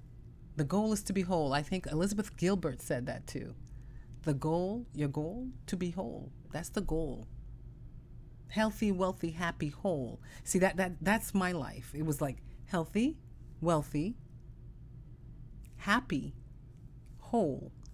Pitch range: 125-165 Hz